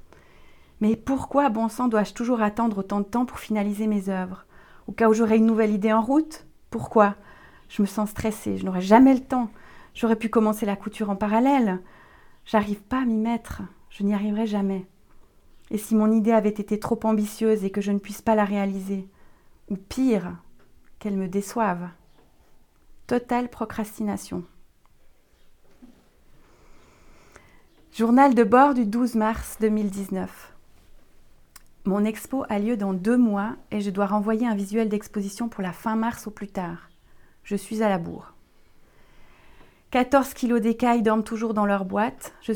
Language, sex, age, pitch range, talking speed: French, female, 40-59, 200-230 Hz, 160 wpm